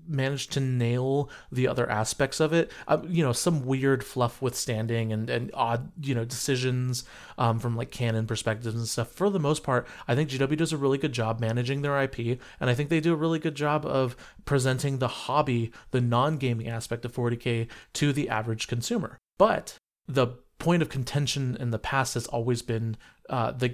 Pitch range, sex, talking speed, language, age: 120-140 Hz, male, 195 wpm, English, 30-49